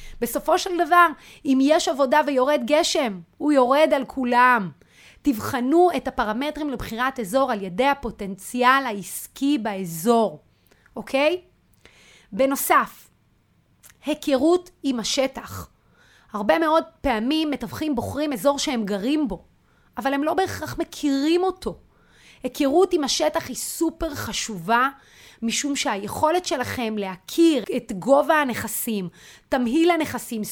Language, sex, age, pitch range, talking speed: Hebrew, female, 30-49, 225-315 Hz, 110 wpm